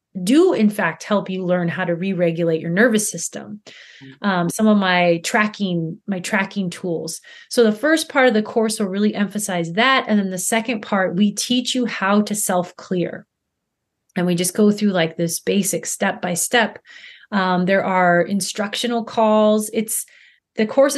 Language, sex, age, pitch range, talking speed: English, female, 30-49, 180-225 Hz, 165 wpm